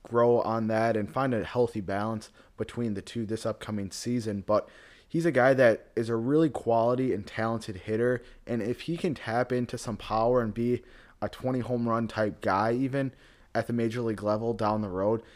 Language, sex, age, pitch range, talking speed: English, male, 20-39, 110-125 Hz, 200 wpm